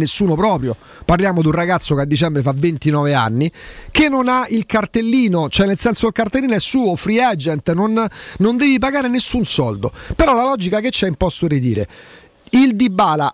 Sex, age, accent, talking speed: male, 40-59, native, 195 wpm